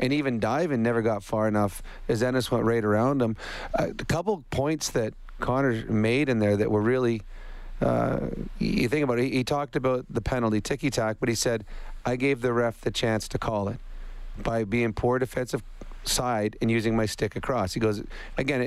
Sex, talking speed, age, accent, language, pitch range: male, 195 wpm, 40-59, American, English, 115-135 Hz